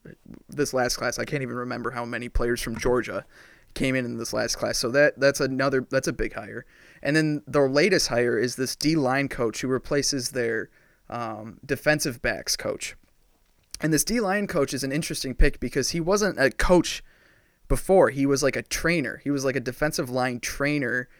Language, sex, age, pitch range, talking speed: English, male, 20-39, 125-145 Hz, 190 wpm